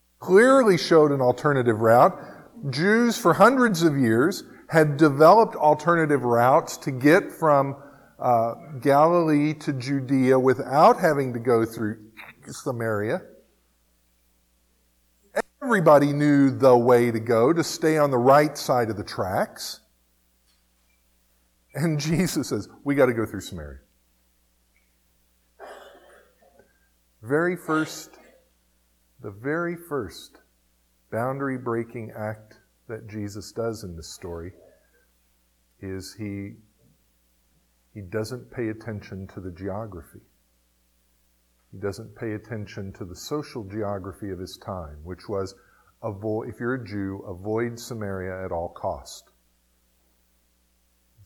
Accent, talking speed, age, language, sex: American, 110 wpm, 50-69, English, male